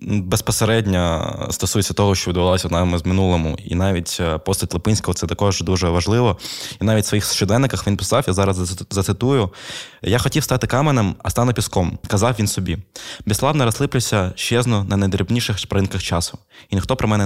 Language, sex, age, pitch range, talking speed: Ukrainian, male, 20-39, 95-110 Hz, 165 wpm